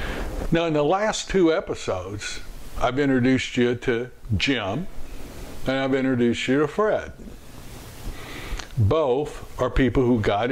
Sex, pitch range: male, 110-145 Hz